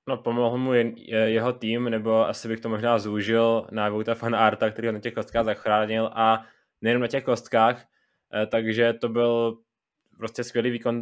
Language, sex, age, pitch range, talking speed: Czech, male, 20-39, 110-120 Hz, 185 wpm